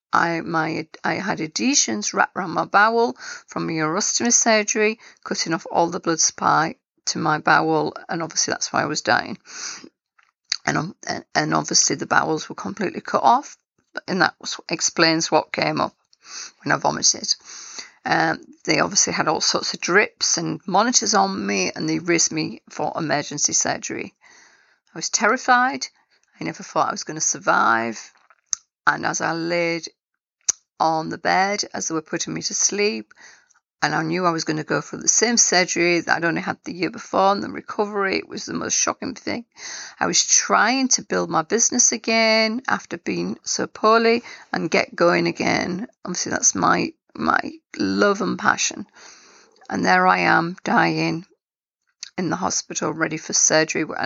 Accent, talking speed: British, 175 wpm